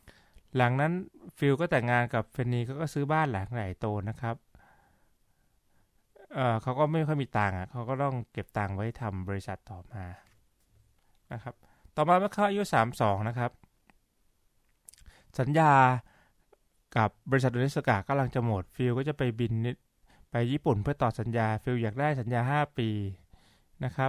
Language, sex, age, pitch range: Thai, male, 20-39, 110-140 Hz